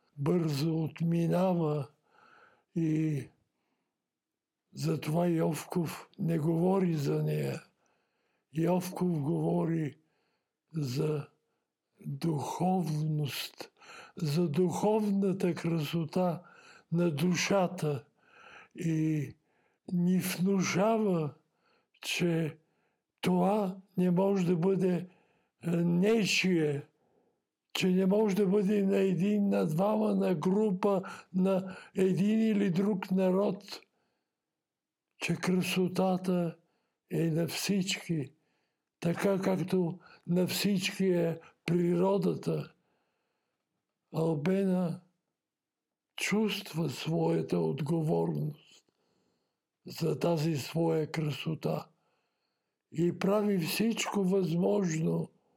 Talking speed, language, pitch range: 70 wpm, Bulgarian, 160-195 Hz